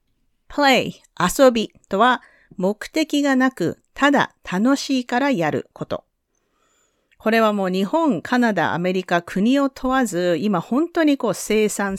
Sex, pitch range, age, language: female, 165-260 Hz, 40-59, Japanese